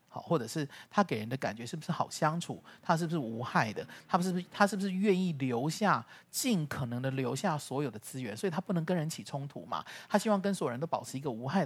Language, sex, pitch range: Chinese, male, 125-190 Hz